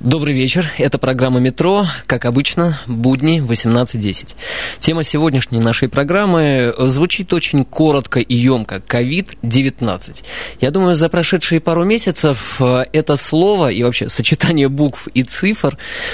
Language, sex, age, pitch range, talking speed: Russian, male, 20-39, 125-155 Hz, 125 wpm